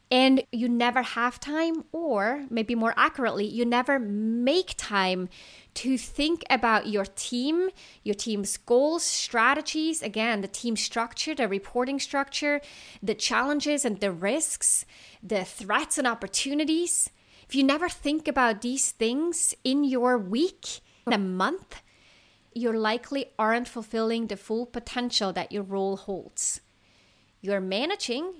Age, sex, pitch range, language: 30-49, female, 205-270 Hz, English